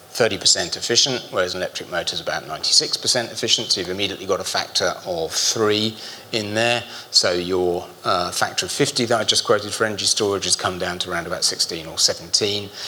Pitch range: 95-115 Hz